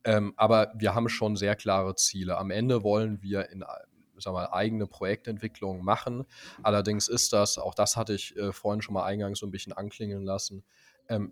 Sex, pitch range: male, 95-110 Hz